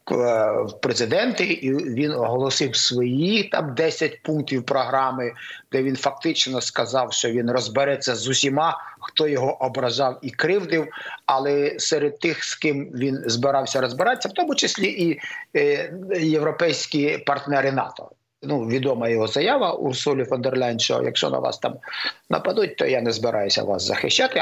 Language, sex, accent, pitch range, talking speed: Ukrainian, male, native, 130-165 Hz, 140 wpm